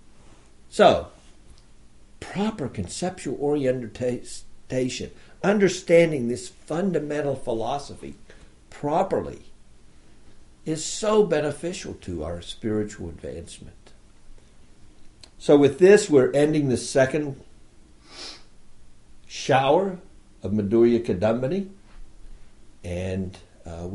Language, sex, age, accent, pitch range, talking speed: English, male, 60-79, American, 95-135 Hz, 75 wpm